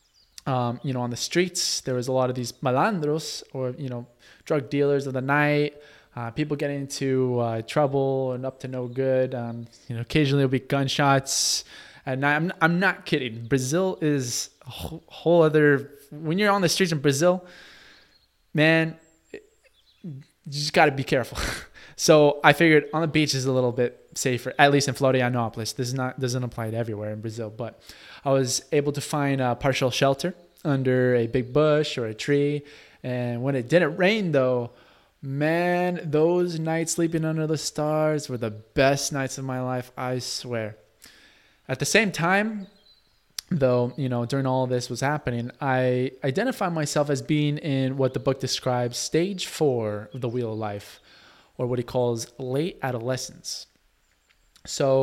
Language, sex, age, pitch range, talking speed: English, male, 20-39, 125-155 Hz, 175 wpm